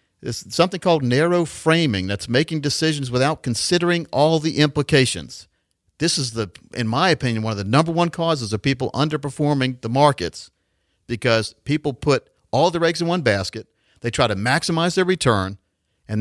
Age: 50-69